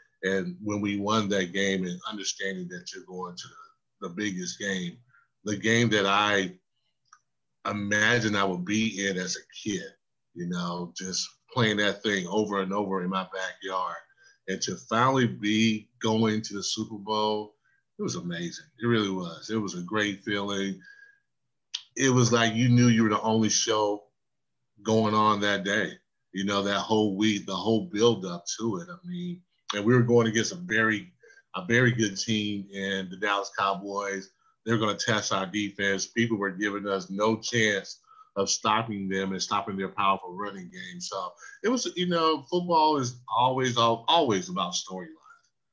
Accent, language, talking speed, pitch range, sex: American, English, 175 wpm, 95-115 Hz, male